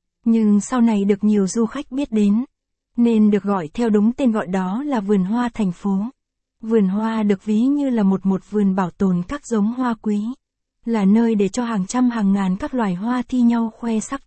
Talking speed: 220 wpm